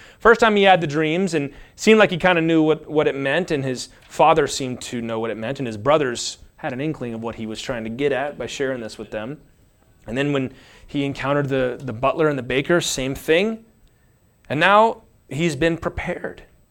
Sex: male